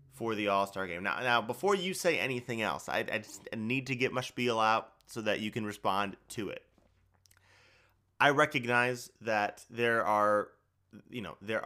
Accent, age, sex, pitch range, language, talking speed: American, 30-49, male, 105-140 Hz, English, 180 wpm